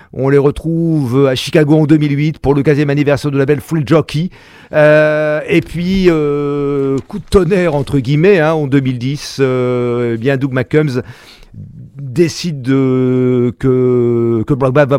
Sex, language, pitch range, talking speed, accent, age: male, English, 135-160 Hz, 155 wpm, French, 40-59